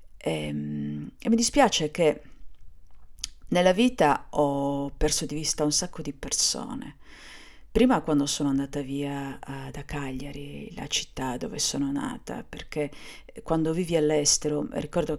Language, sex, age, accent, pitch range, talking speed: Italian, female, 50-69, native, 140-155 Hz, 125 wpm